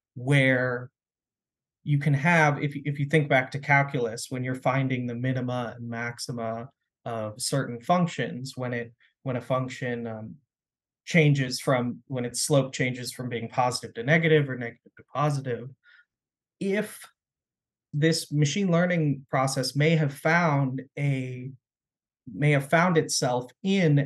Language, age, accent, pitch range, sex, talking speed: English, 30-49, American, 130-155 Hz, male, 135 wpm